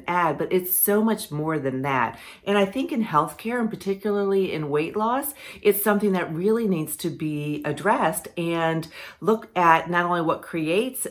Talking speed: 180 wpm